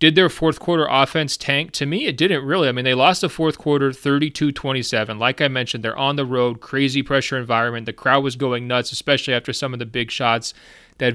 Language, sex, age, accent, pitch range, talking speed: English, male, 30-49, American, 120-140 Hz, 225 wpm